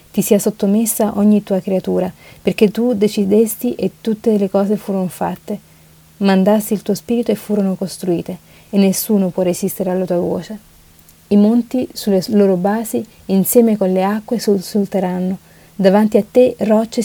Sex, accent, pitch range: female, native, 185-210 Hz